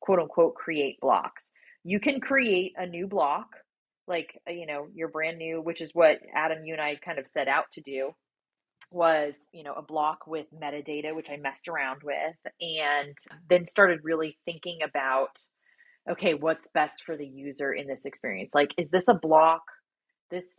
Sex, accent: female, American